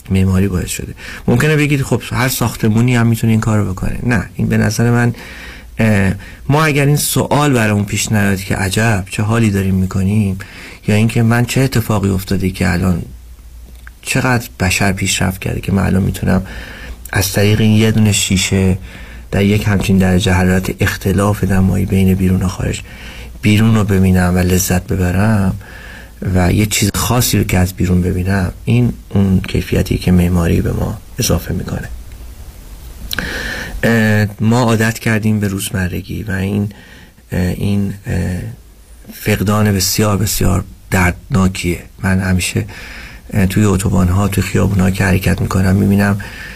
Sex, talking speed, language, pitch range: male, 145 wpm, Persian, 95-110 Hz